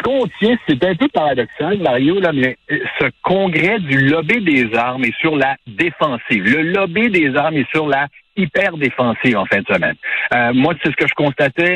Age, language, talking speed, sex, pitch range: 60-79, French, 185 wpm, male, 130-165 Hz